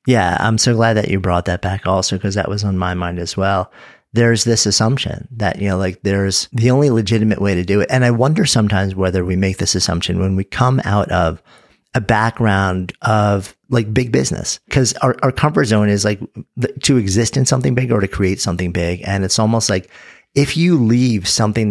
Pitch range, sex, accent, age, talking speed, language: 95-115 Hz, male, American, 40-59, 215 wpm, English